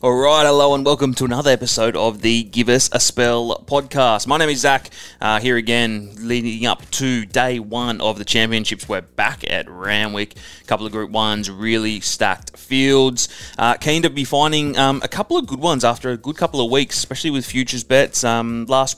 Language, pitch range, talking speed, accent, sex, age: English, 105-130 Hz, 200 wpm, Australian, male, 20-39